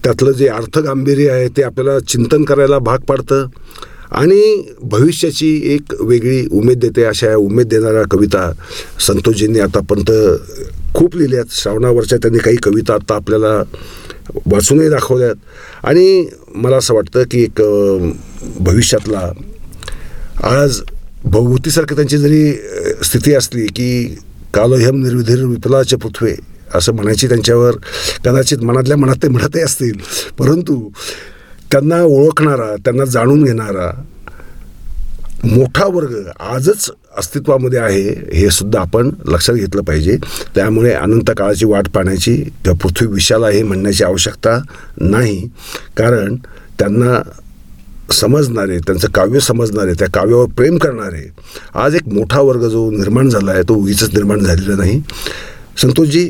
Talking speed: 115 wpm